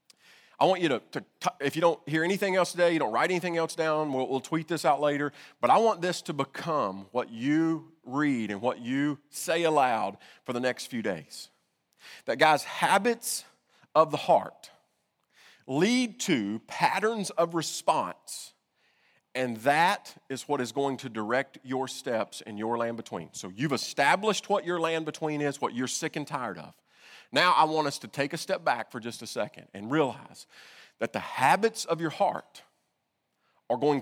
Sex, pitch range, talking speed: male, 130-185 Hz, 185 wpm